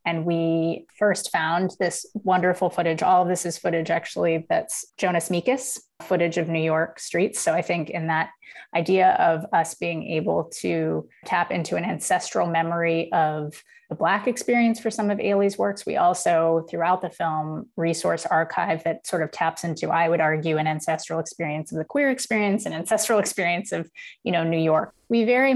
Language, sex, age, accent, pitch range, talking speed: English, female, 30-49, American, 165-190 Hz, 185 wpm